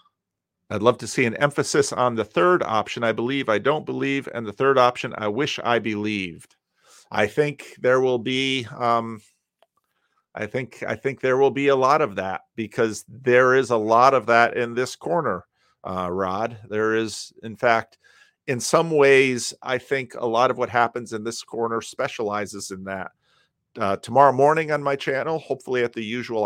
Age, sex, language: 50-69, male, English